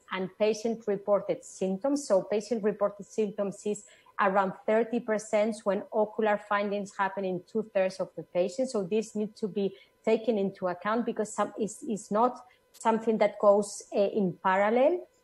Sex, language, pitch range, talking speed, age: female, English, 200-235 Hz, 155 wpm, 30-49